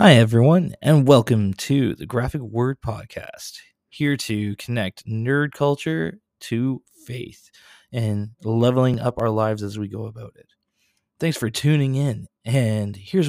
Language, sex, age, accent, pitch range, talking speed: English, male, 20-39, American, 100-125 Hz, 145 wpm